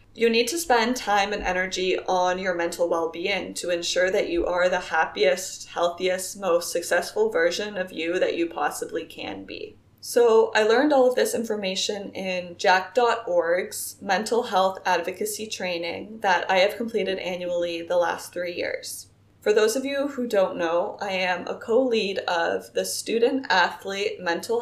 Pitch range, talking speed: 185-245 Hz, 160 wpm